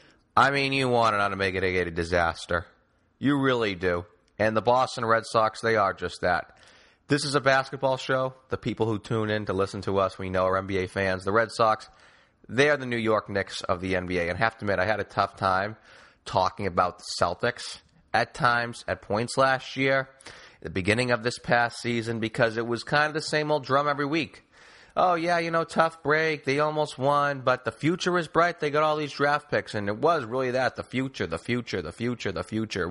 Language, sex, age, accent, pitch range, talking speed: English, male, 30-49, American, 100-140 Hz, 225 wpm